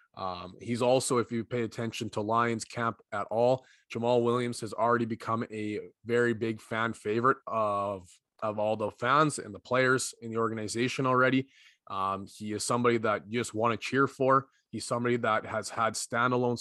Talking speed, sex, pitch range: 185 wpm, male, 105-120 Hz